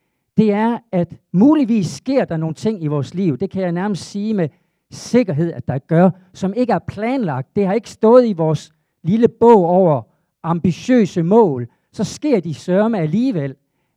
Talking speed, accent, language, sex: 175 wpm, native, Danish, male